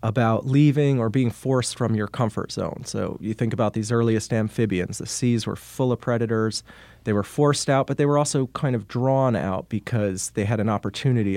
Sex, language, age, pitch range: male, English, 30-49, 105-125 Hz